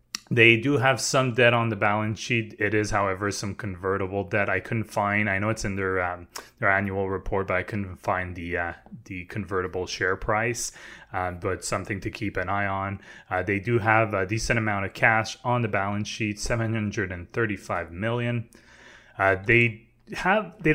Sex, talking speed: male, 185 wpm